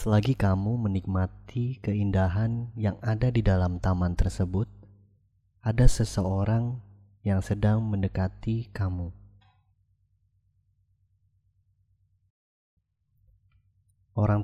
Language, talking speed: Indonesian, 70 wpm